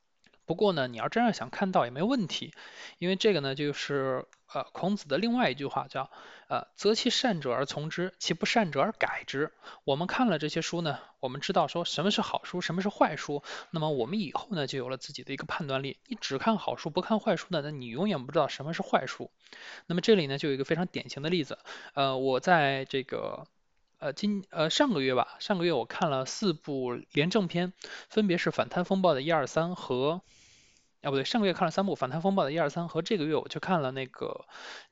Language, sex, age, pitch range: Chinese, male, 20-39, 145-200 Hz